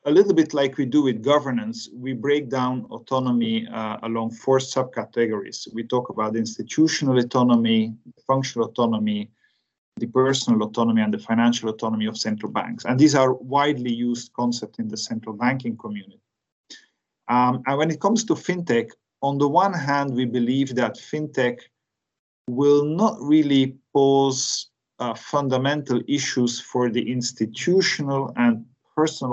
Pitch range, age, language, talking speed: 115-135 Hz, 40-59, English, 145 wpm